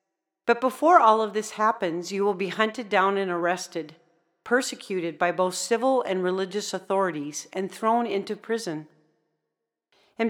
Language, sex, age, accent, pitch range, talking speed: English, female, 40-59, American, 180-225 Hz, 145 wpm